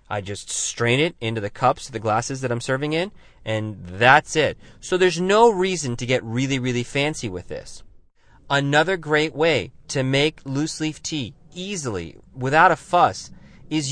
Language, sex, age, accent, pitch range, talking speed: English, male, 30-49, American, 115-155 Hz, 175 wpm